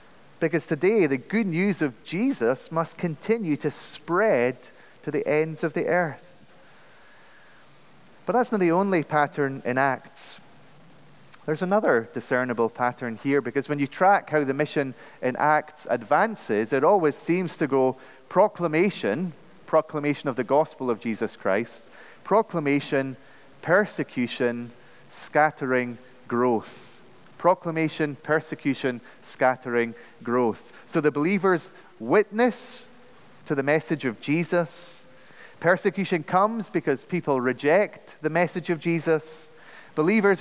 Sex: male